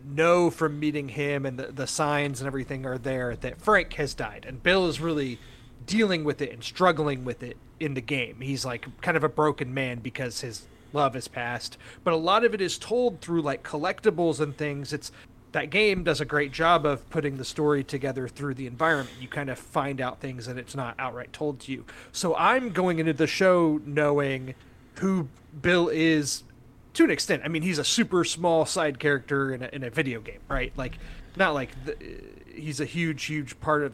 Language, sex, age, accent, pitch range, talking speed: English, male, 30-49, American, 130-170 Hz, 210 wpm